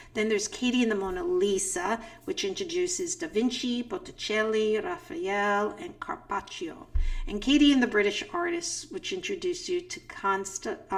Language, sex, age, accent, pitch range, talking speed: English, female, 50-69, American, 215-345 Hz, 140 wpm